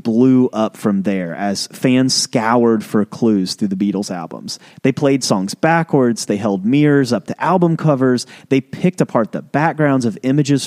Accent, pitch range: American, 115-150 Hz